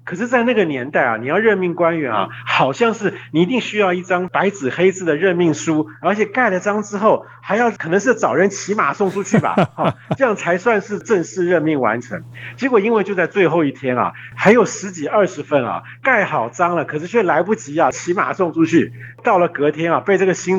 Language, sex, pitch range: Chinese, male, 150-200 Hz